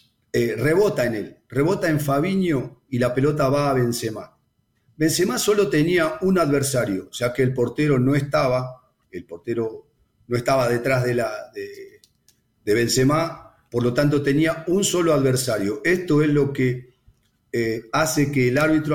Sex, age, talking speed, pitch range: male, 40-59, 150 wpm, 125-155 Hz